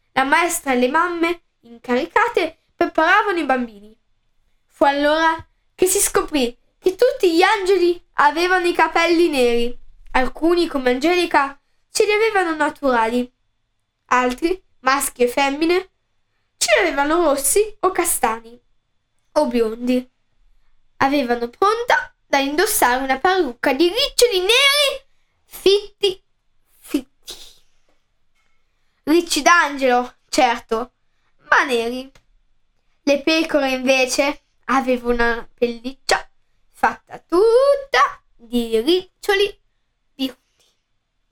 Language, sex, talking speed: Italian, female, 95 wpm